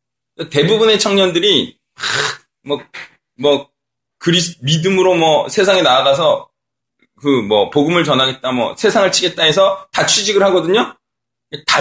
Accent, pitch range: native, 125-180 Hz